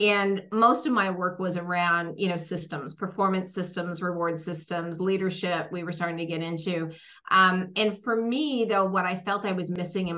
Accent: American